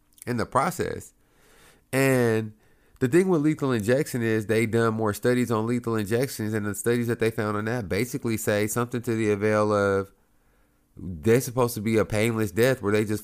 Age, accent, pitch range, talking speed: 30-49, American, 100-125 Hz, 190 wpm